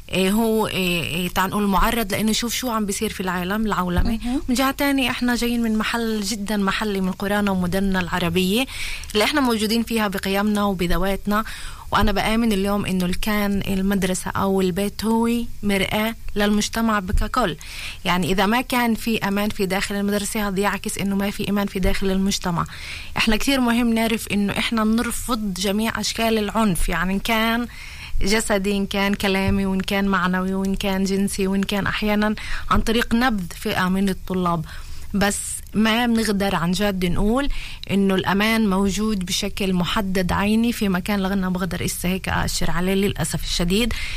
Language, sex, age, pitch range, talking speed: Hebrew, female, 20-39, 190-220 Hz, 155 wpm